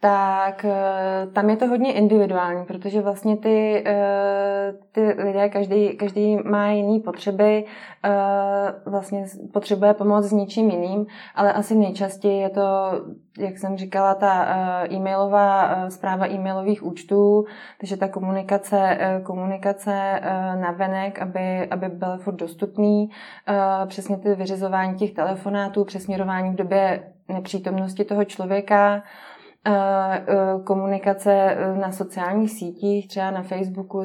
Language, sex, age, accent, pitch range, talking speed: Czech, female, 20-39, native, 190-200 Hz, 115 wpm